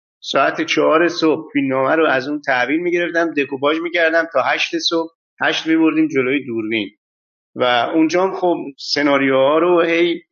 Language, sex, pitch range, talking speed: Persian, male, 125-170 Hz, 150 wpm